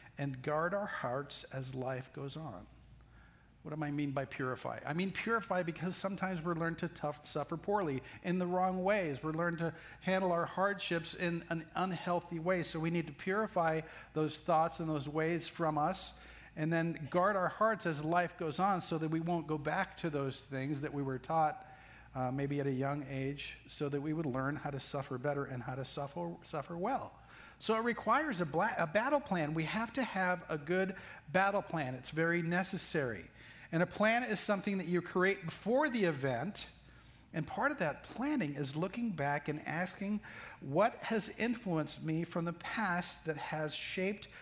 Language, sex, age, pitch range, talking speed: English, male, 40-59, 145-185 Hz, 190 wpm